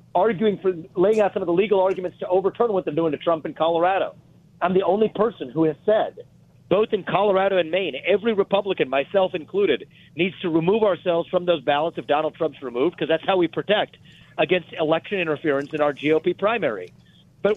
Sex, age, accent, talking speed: male, 40-59, American, 200 wpm